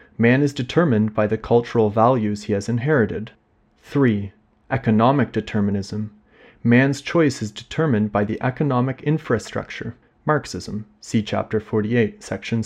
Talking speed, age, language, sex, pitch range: 125 wpm, 30-49, English, male, 105-130 Hz